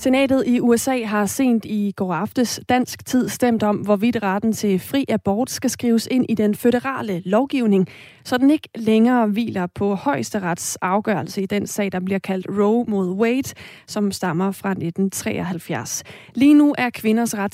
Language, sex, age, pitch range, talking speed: Danish, female, 30-49, 190-235 Hz, 170 wpm